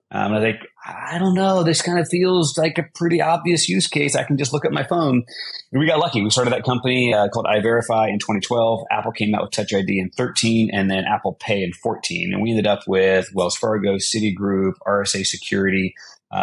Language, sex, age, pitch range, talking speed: English, male, 30-49, 95-120 Hz, 225 wpm